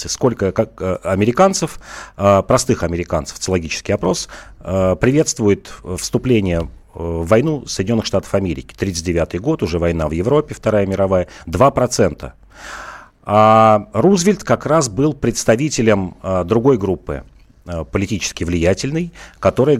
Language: Russian